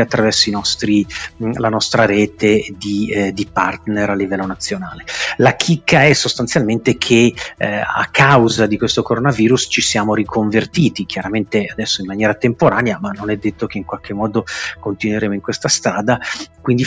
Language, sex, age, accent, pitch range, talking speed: Italian, male, 40-59, native, 105-125 Hz, 160 wpm